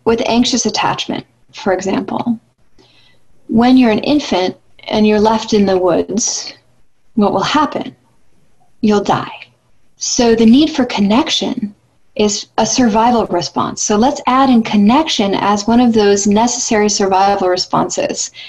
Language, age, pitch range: English, 30-49, 190-235 Hz